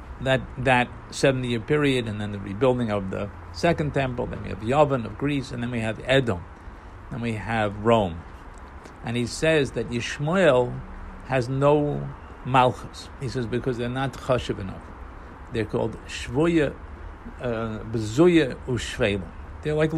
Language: English